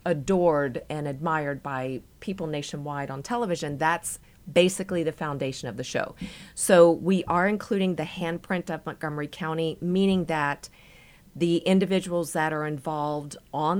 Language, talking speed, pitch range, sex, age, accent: English, 140 wpm, 145-175 Hz, female, 40-59, American